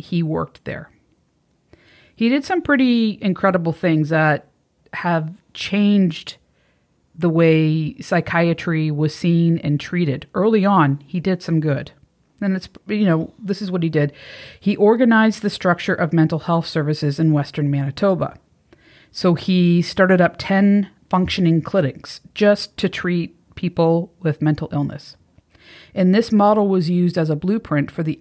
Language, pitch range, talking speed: English, 155-185 Hz, 145 wpm